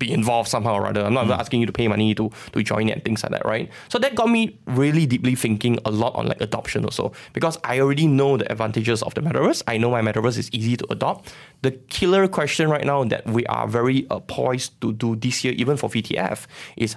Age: 20-39